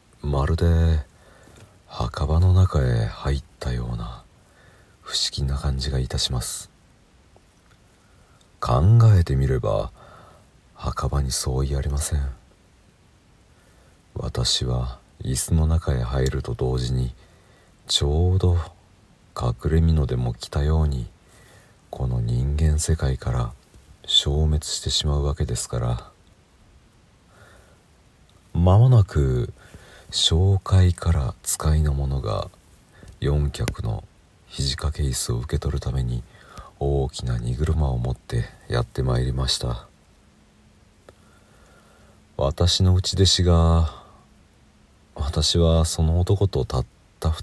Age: 40-59